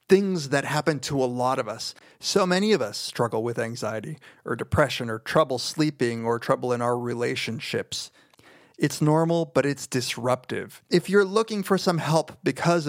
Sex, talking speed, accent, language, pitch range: male, 170 wpm, American, English, 130-170 Hz